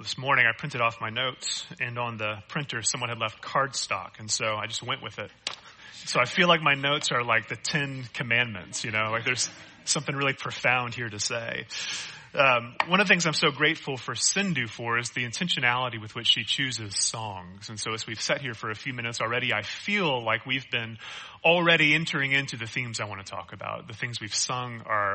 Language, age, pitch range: English, 30-49, 115-155 Hz